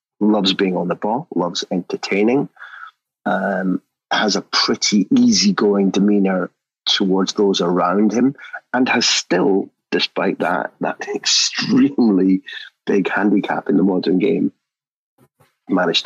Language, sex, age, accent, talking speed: English, male, 30-49, British, 115 wpm